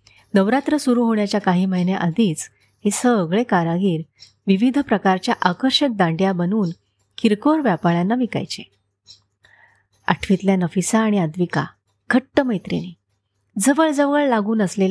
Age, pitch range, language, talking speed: 30-49, 170-235 Hz, Marathi, 95 wpm